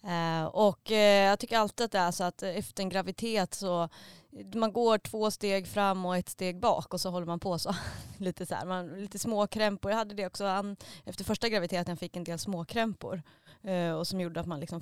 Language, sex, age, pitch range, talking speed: Swedish, female, 20-39, 175-230 Hz, 205 wpm